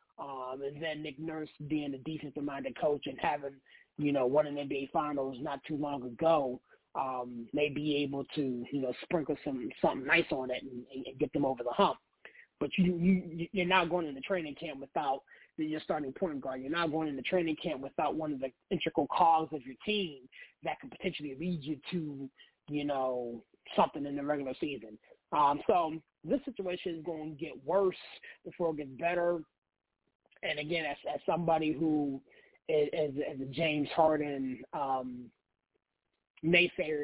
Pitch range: 140-170 Hz